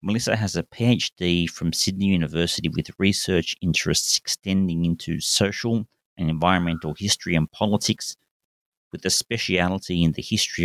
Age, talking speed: 30-49, 135 wpm